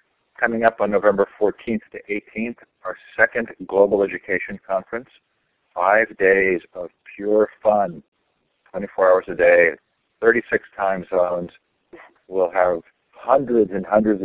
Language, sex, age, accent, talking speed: English, male, 50-69, American, 120 wpm